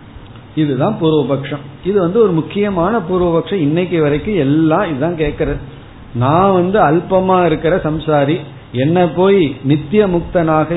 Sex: male